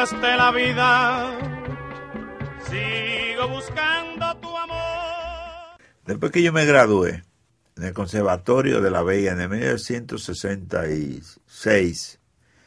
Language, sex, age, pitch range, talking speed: Spanish, male, 50-69, 95-120 Hz, 100 wpm